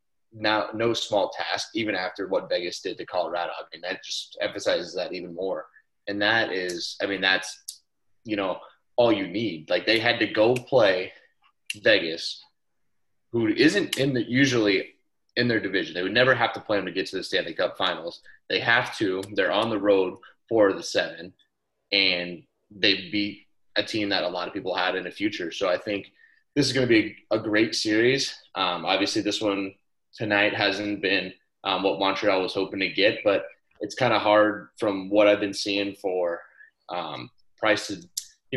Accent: American